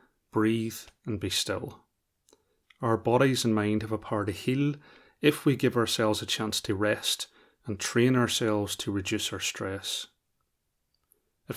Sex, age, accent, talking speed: male, 30-49, British, 150 wpm